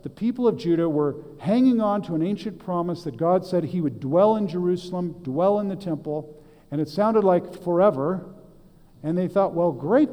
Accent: American